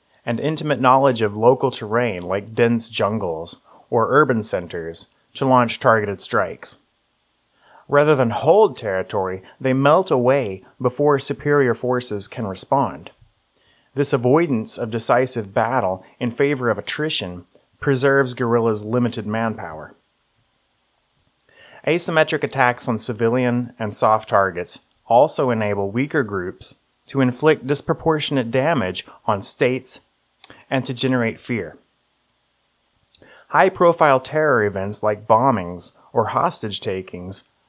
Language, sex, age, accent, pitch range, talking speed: English, male, 30-49, American, 110-140 Hz, 110 wpm